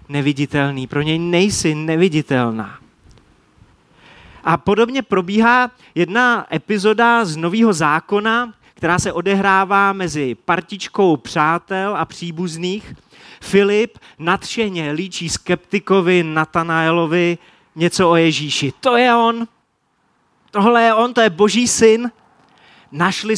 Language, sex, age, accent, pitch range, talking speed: Czech, male, 30-49, native, 145-195 Hz, 105 wpm